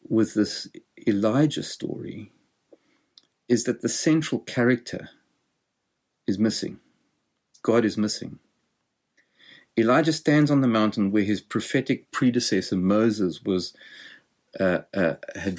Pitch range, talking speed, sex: 100-120 Hz, 110 wpm, male